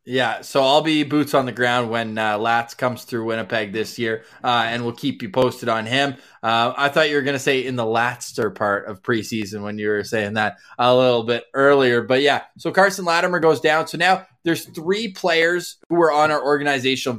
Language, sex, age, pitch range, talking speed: English, male, 20-39, 120-150 Hz, 225 wpm